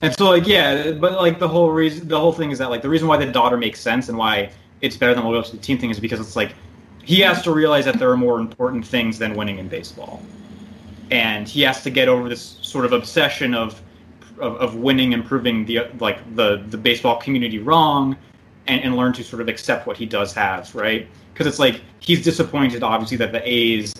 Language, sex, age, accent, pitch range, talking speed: English, male, 20-39, American, 105-135 Hz, 240 wpm